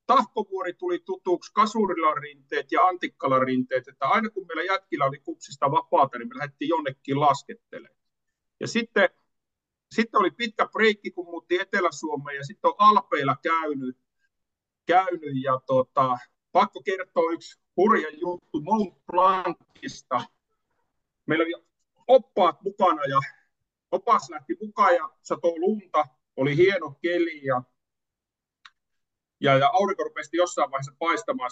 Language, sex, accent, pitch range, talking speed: Finnish, male, native, 140-230 Hz, 125 wpm